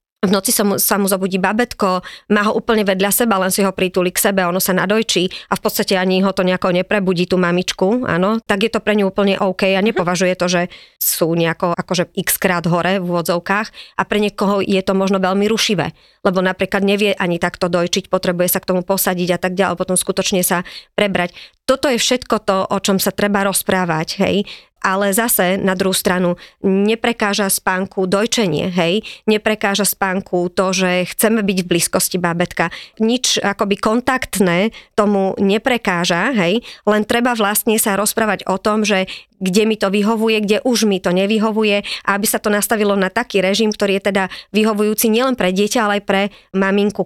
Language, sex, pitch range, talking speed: Slovak, male, 185-210 Hz, 190 wpm